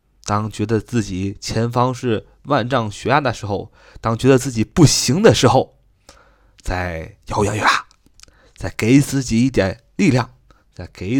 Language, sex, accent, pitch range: Chinese, male, native, 110-145 Hz